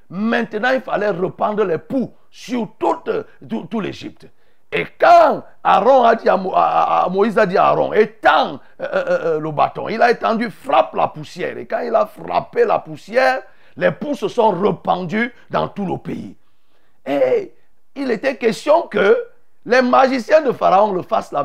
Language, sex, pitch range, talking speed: French, male, 190-260 Hz, 180 wpm